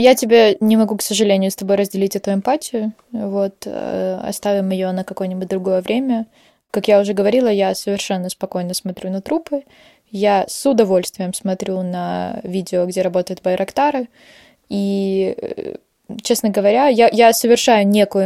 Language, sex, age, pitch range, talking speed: Russian, female, 20-39, 190-220 Hz, 145 wpm